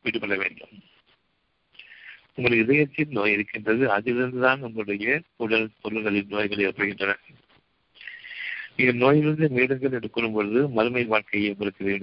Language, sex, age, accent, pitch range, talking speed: Tamil, male, 60-79, native, 105-130 Hz, 90 wpm